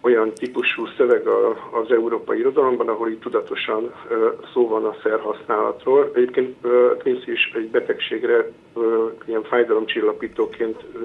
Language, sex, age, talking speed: Hungarian, male, 50-69, 110 wpm